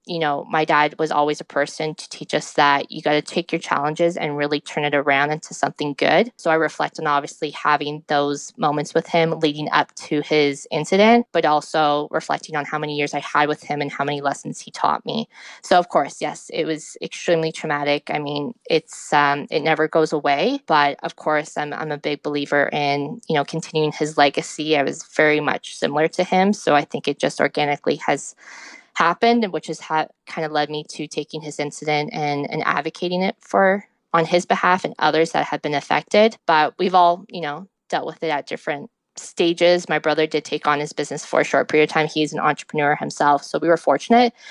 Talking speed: 215 wpm